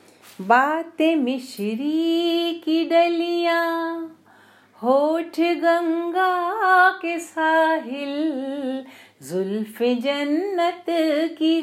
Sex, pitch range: female, 245-325 Hz